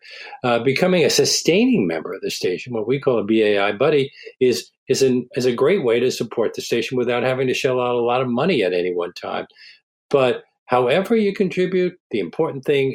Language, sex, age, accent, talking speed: English, male, 50-69, American, 210 wpm